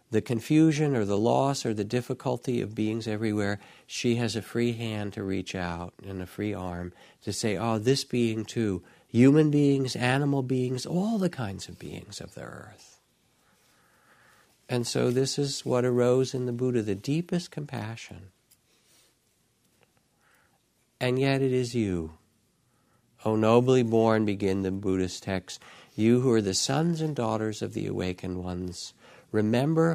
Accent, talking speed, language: American, 155 wpm, English